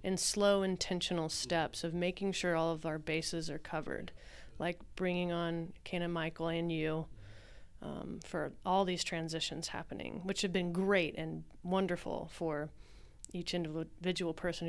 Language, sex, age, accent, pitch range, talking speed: English, female, 30-49, American, 160-180 Hz, 150 wpm